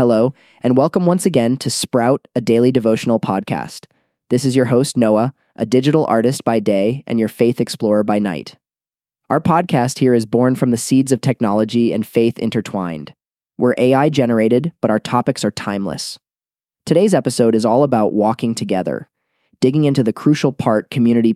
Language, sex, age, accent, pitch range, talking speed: English, male, 20-39, American, 105-130 Hz, 170 wpm